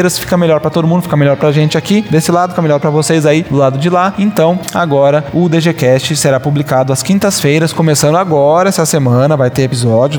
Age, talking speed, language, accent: 20-39, 210 wpm, Portuguese, Brazilian